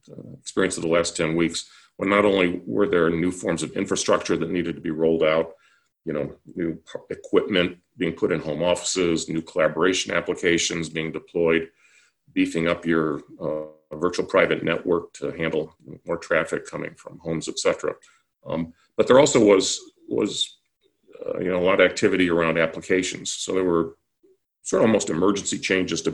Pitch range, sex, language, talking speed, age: 85-105 Hz, male, English, 175 wpm, 40-59